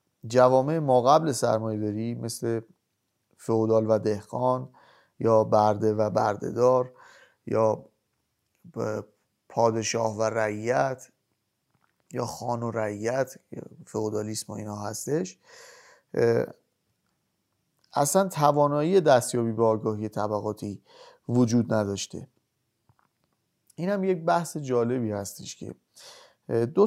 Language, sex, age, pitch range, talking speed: Persian, male, 30-49, 110-140 Hz, 85 wpm